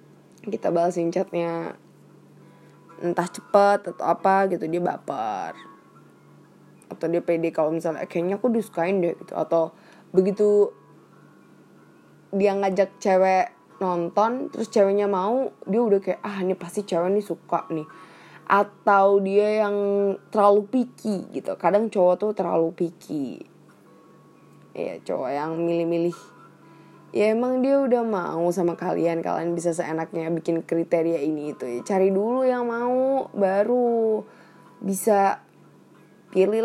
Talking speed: 125 wpm